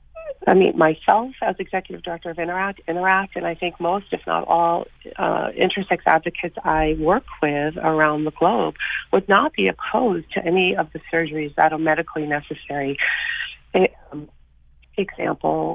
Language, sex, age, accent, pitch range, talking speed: English, female, 40-59, American, 135-175 Hz, 155 wpm